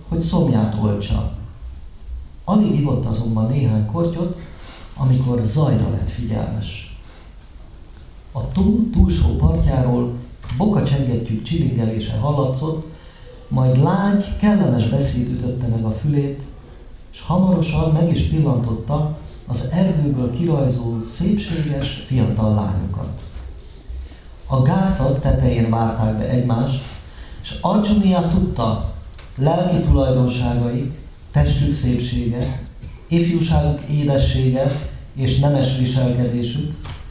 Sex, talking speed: male, 90 wpm